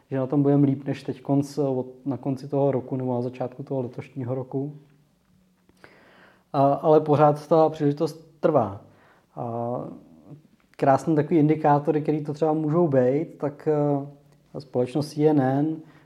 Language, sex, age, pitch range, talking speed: Czech, male, 20-39, 135-150 Hz, 125 wpm